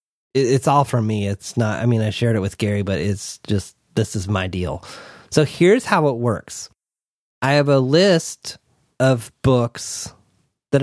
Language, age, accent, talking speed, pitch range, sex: English, 30-49, American, 175 wpm, 110-140 Hz, male